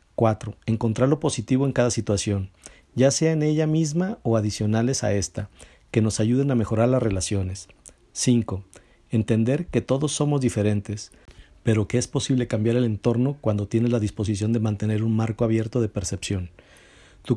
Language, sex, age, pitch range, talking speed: Spanish, male, 50-69, 105-125 Hz, 165 wpm